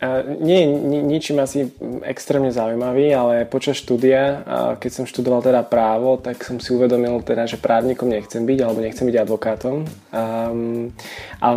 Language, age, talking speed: Slovak, 20-39, 155 wpm